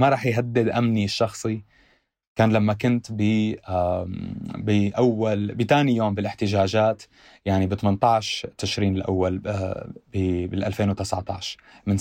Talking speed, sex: 105 wpm, male